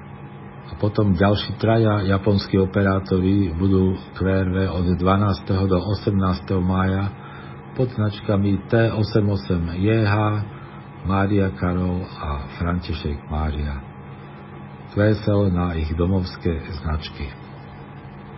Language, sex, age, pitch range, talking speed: Slovak, male, 50-69, 85-105 Hz, 80 wpm